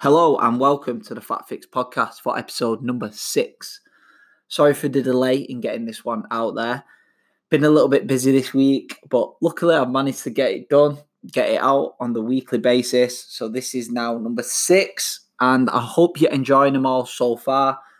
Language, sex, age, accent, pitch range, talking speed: English, male, 20-39, British, 115-135 Hz, 195 wpm